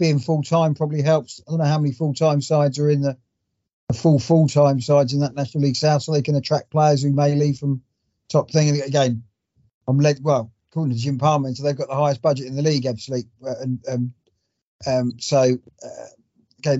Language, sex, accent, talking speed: English, male, British, 225 wpm